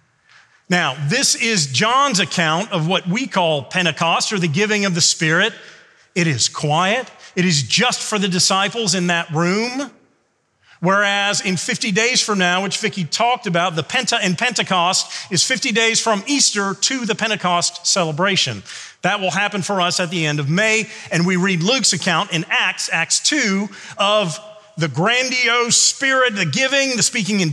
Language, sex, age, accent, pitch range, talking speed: English, male, 40-59, American, 170-230 Hz, 170 wpm